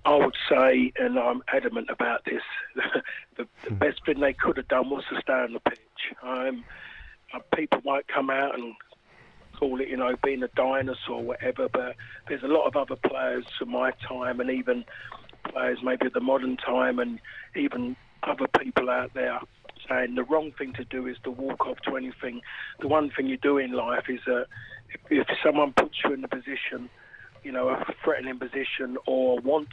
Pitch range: 125-140 Hz